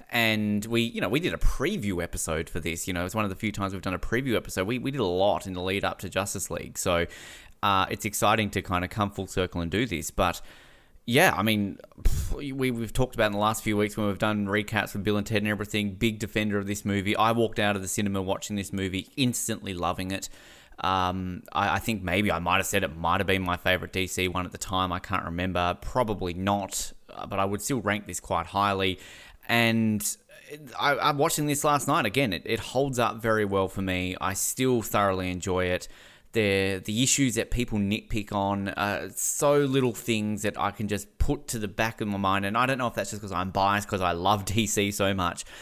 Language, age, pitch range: English, 20-39, 95-110 Hz